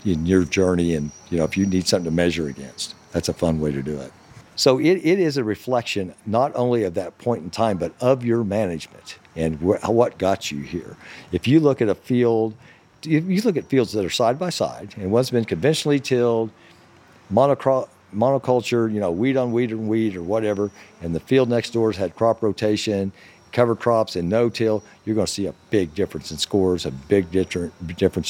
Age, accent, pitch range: 50-69, American, 85-115 Hz